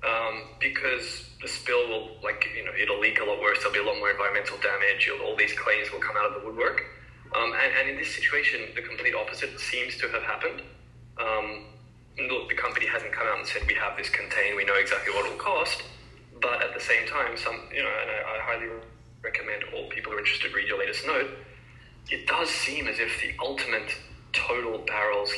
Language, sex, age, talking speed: English, male, 10-29, 220 wpm